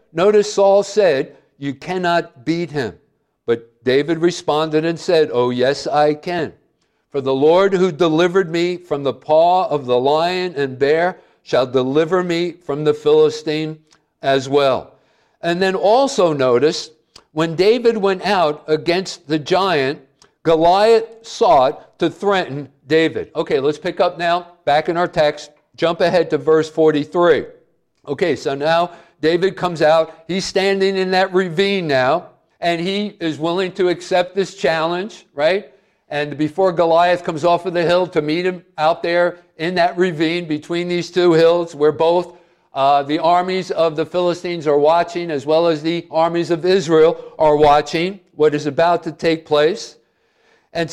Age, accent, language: 50-69, American, English